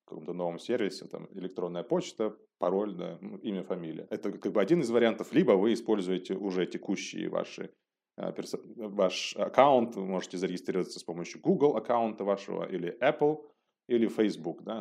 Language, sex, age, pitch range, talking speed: Russian, male, 30-49, 90-110 Hz, 150 wpm